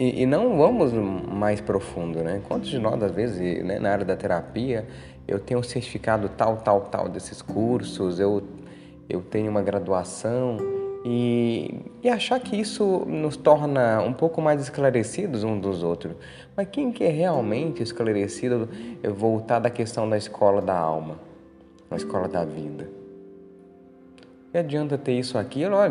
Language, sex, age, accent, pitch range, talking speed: Portuguese, male, 20-39, Brazilian, 95-130 Hz, 155 wpm